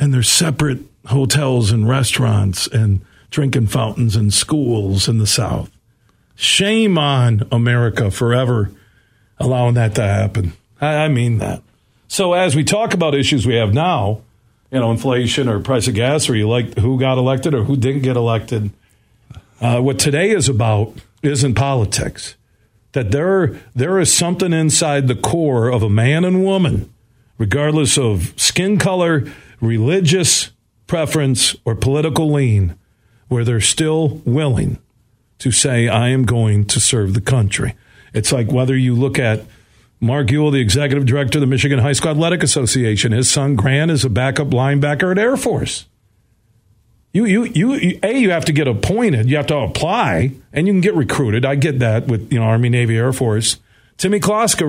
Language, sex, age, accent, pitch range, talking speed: English, male, 50-69, American, 115-150 Hz, 170 wpm